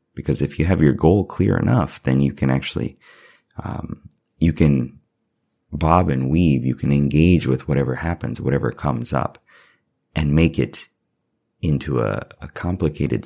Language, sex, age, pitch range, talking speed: English, male, 30-49, 70-85 Hz, 155 wpm